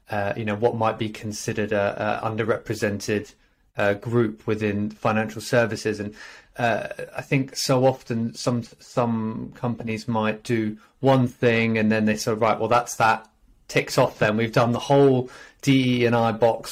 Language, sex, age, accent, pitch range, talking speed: English, male, 30-49, British, 110-130 Hz, 170 wpm